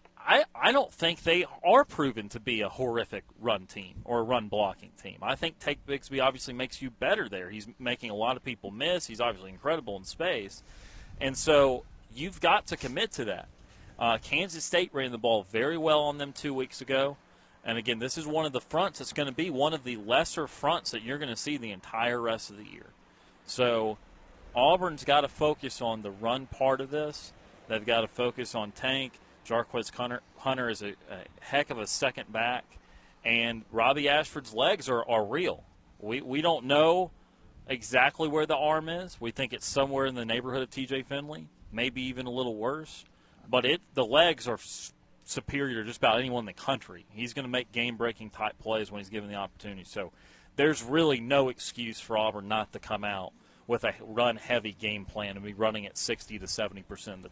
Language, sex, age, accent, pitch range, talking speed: English, male, 30-49, American, 110-140 Hz, 205 wpm